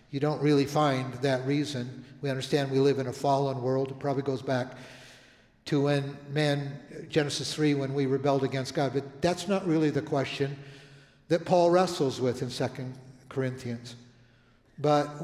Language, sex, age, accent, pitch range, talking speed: English, male, 60-79, American, 125-150 Hz, 165 wpm